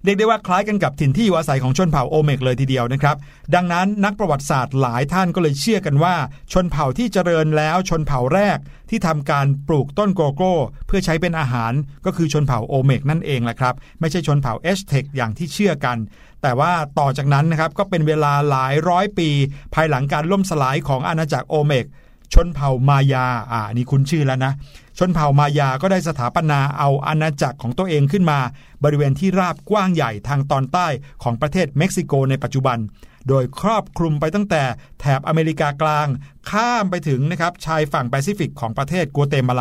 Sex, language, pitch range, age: male, Thai, 135-180 Hz, 60-79